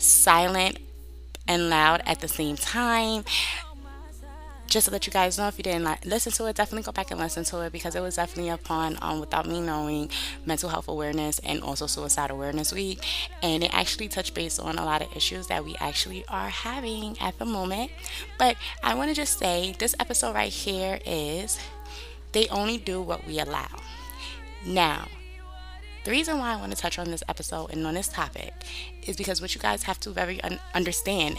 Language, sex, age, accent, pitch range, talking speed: English, female, 20-39, American, 155-200 Hz, 195 wpm